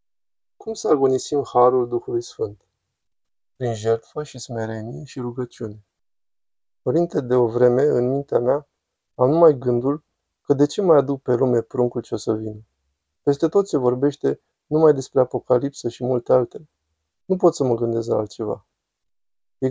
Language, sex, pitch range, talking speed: Romanian, male, 115-140 Hz, 160 wpm